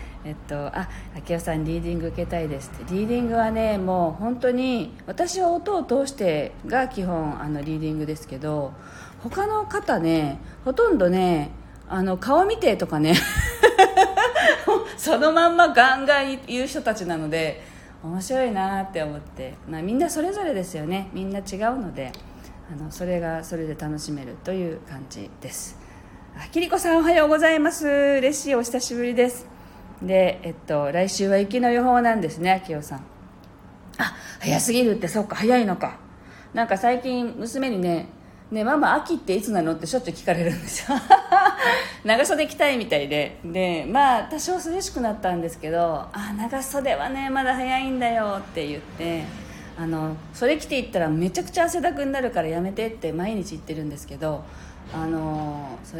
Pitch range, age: 160-260 Hz, 40-59